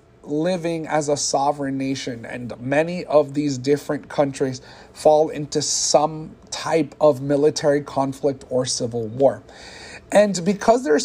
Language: English